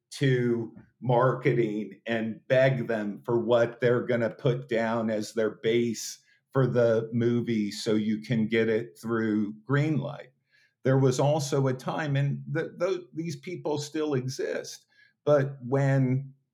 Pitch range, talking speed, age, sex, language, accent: 110-135 Hz, 135 wpm, 50-69, male, English, American